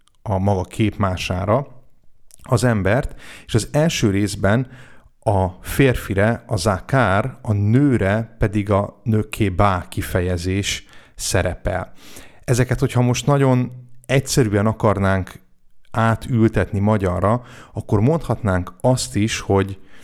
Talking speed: 100 wpm